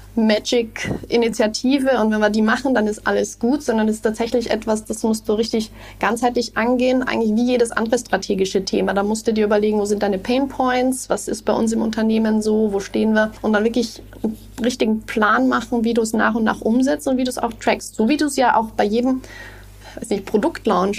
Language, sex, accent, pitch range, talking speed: German, female, German, 210-240 Hz, 220 wpm